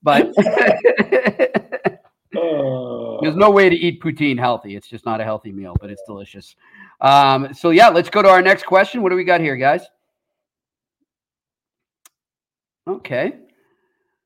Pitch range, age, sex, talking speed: 135-185 Hz, 40-59, male, 140 wpm